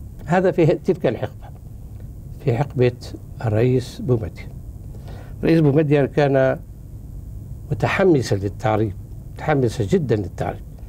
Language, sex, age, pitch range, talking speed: Arabic, male, 60-79, 110-150 Hz, 90 wpm